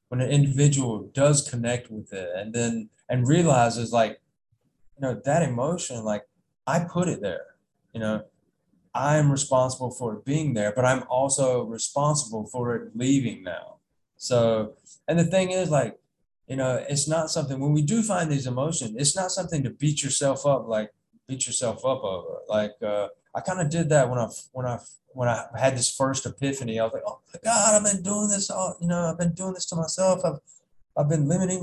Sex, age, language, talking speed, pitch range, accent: male, 20-39, English, 200 wpm, 125-175 Hz, American